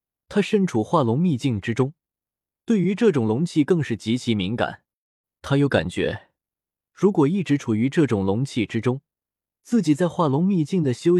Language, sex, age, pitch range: Chinese, male, 20-39, 110-160 Hz